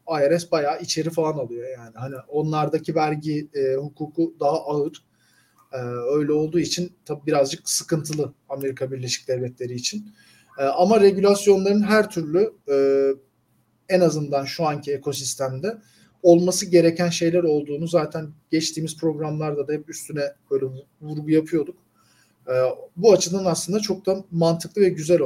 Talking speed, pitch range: 135 wpm, 140-180 Hz